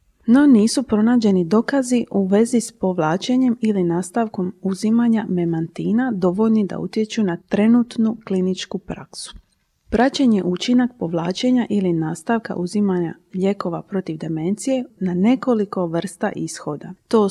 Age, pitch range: 30-49, 175-235 Hz